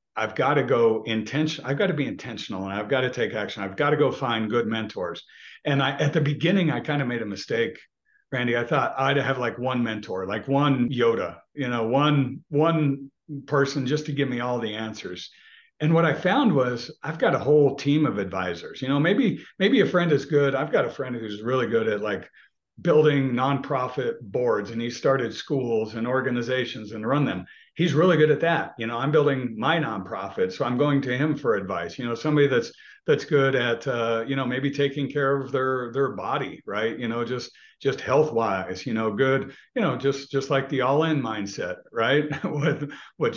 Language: English